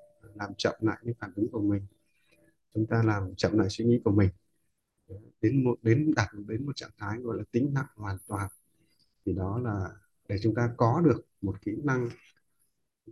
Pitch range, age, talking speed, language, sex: 100-120 Hz, 20-39, 195 wpm, Vietnamese, male